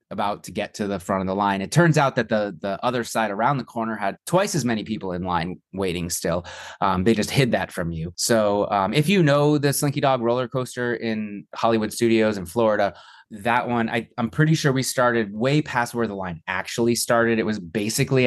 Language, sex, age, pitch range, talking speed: English, male, 20-39, 110-155 Hz, 225 wpm